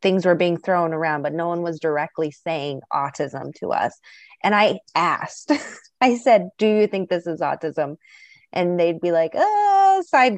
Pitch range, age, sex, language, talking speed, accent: 155-190 Hz, 20-39, female, English, 180 wpm, American